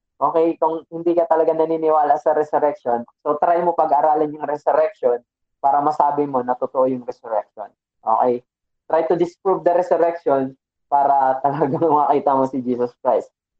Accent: native